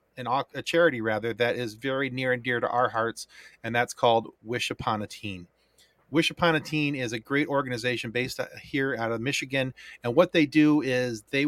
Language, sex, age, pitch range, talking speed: English, male, 30-49, 115-135 Hz, 200 wpm